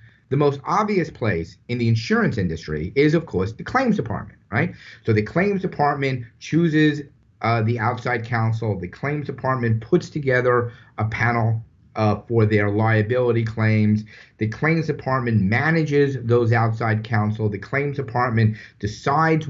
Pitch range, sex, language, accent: 110-145 Hz, male, English, American